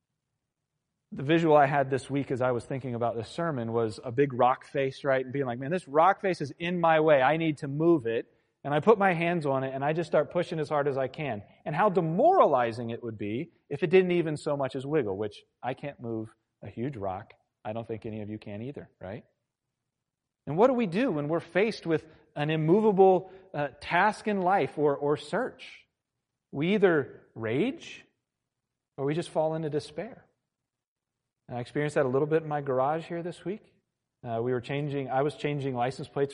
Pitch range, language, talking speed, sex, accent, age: 130-175 Hz, English, 215 wpm, male, American, 40-59